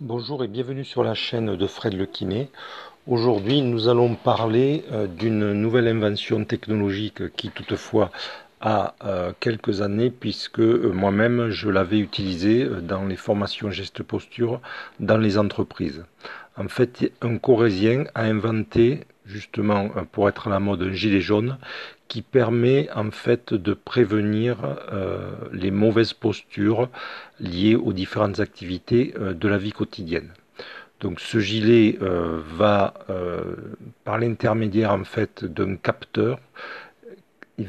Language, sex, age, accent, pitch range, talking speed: French, male, 50-69, French, 100-115 Hz, 125 wpm